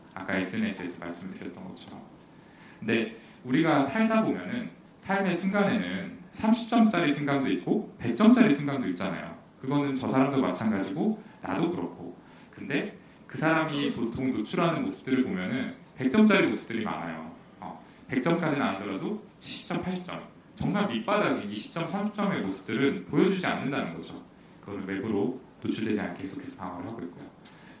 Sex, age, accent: male, 40-59, native